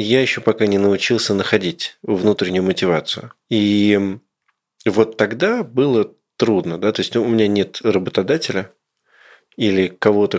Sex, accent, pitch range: male, native, 95-115 Hz